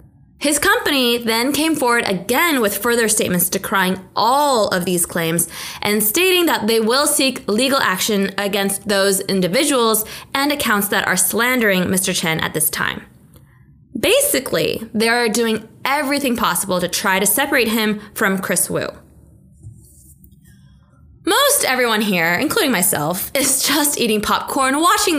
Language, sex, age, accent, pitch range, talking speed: English, female, 20-39, American, 195-275 Hz, 140 wpm